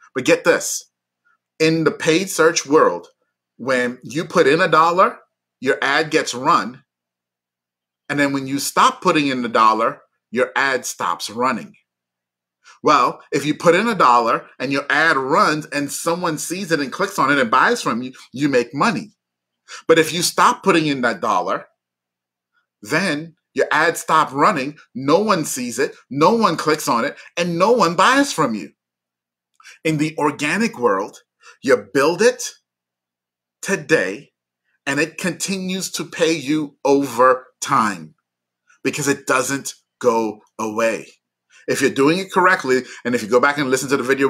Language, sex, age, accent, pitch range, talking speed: English, male, 30-49, American, 115-190 Hz, 165 wpm